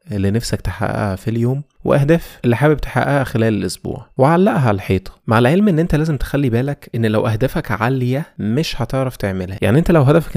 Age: 20-39